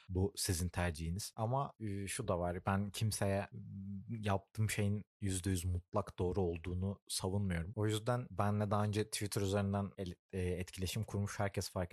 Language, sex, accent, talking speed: Turkish, male, native, 135 wpm